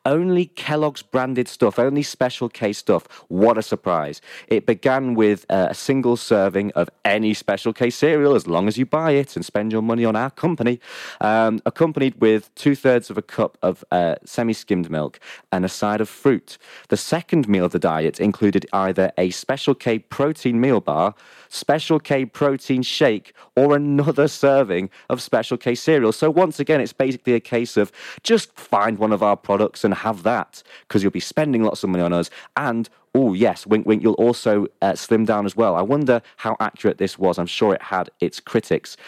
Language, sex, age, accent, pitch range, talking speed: English, male, 30-49, British, 100-135 Hz, 195 wpm